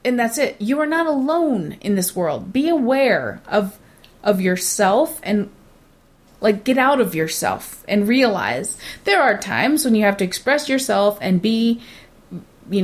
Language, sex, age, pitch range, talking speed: English, female, 30-49, 200-255 Hz, 165 wpm